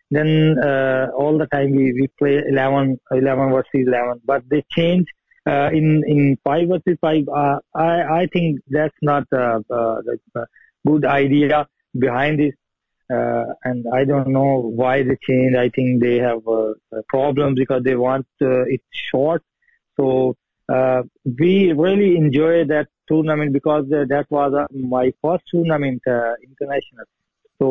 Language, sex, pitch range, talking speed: English, male, 125-150 Hz, 160 wpm